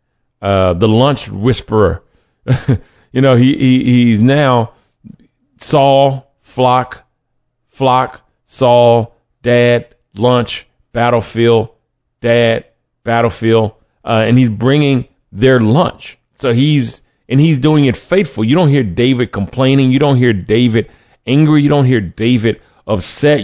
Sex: male